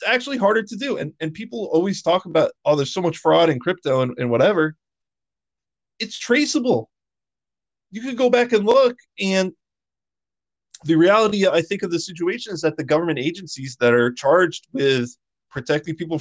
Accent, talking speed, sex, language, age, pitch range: American, 175 wpm, male, English, 20-39, 125-185 Hz